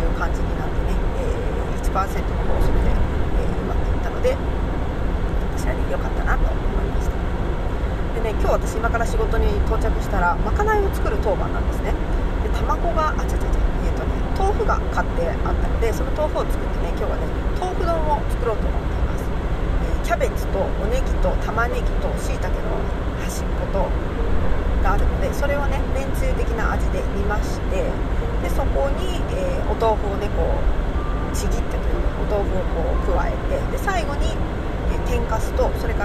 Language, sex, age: Japanese, female, 40-59